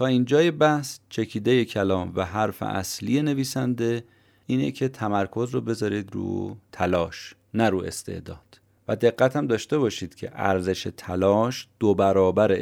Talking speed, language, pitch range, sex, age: 140 wpm, Persian, 95-130 Hz, male, 30-49